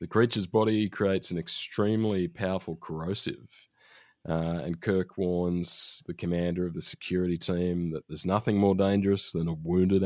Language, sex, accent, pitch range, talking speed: English, male, Australian, 85-95 Hz, 155 wpm